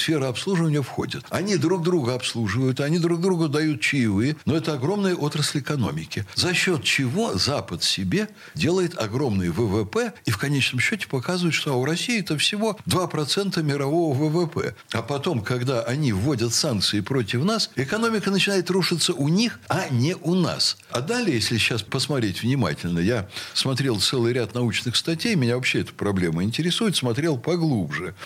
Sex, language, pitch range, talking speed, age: male, Russian, 120-175 Hz, 155 wpm, 60-79